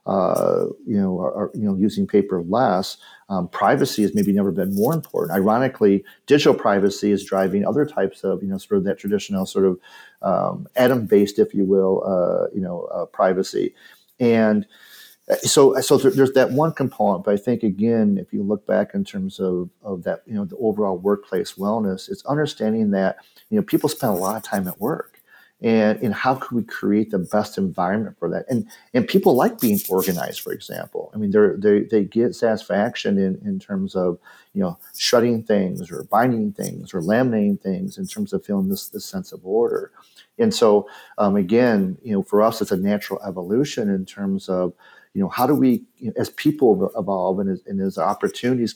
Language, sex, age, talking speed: English, male, 40-59, 195 wpm